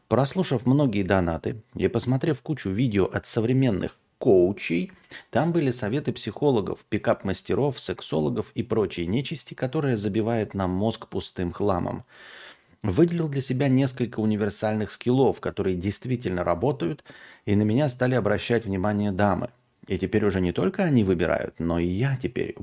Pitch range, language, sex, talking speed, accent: 95-130 Hz, Russian, male, 140 wpm, native